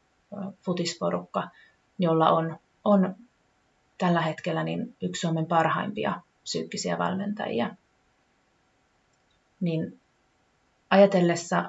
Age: 30-49